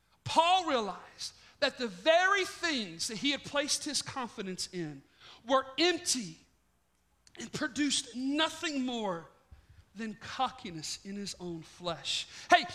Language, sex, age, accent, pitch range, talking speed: English, male, 40-59, American, 210-340 Hz, 120 wpm